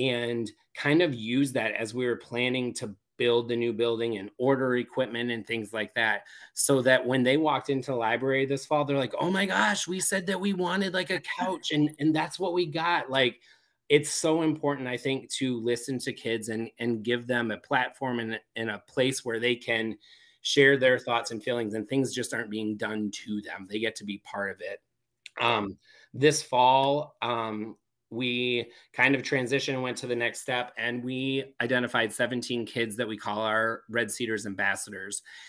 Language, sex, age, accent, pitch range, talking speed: English, male, 30-49, American, 115-135 Hz, 200 wpm